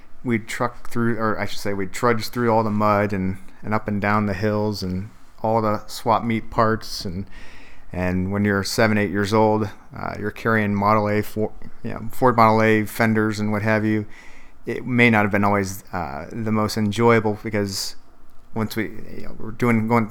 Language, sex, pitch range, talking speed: English, male, 100-110 Hz, 205 wpm